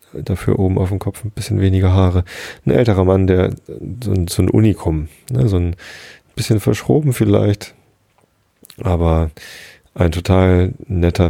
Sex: male